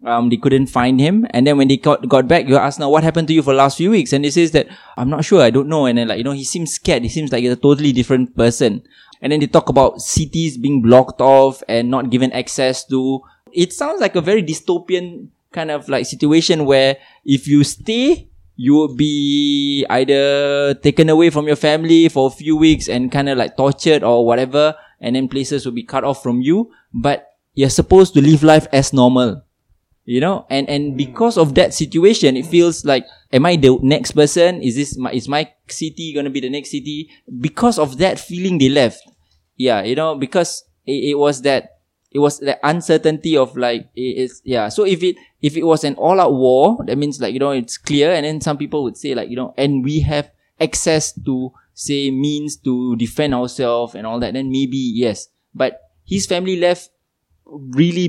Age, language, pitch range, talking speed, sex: 20-39, English, 130-155 Hz, 220 wpm, male